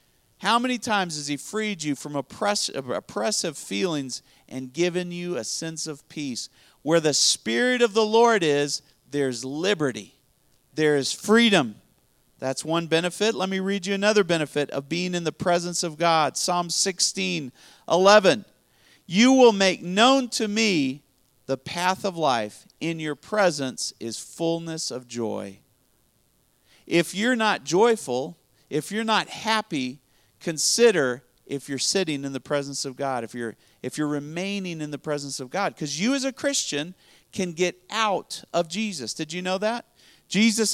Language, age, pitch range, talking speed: English, 40-59, 140-200 Hz, 160 wpm